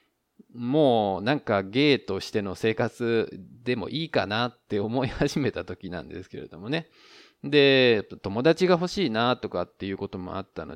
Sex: male